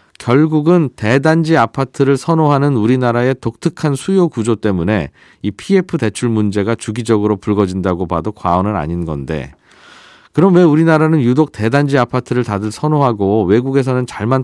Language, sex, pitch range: Korean, male, 110-150 Hz